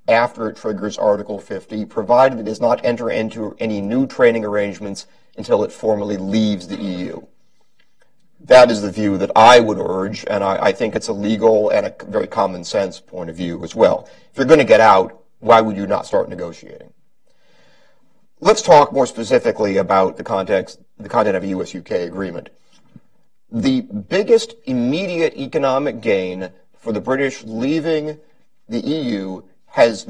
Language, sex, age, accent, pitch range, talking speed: English, male, 40-59, American, 100-140 Hz, 165 wpm